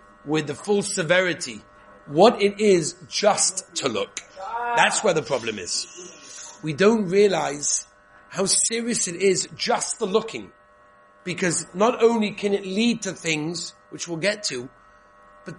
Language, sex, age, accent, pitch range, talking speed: English, male, 40-59, British, 150-190 Hz, 145 wpm